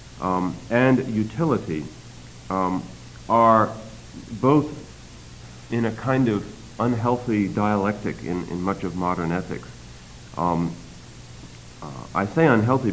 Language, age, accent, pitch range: English, 50-69, American, 90-115 Hz